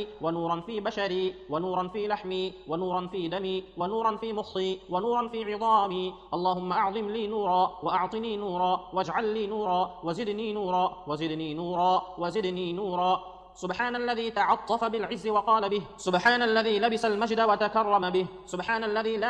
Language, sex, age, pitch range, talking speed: Arabic, male, 30-49, 185-220 Hz, 145 wpm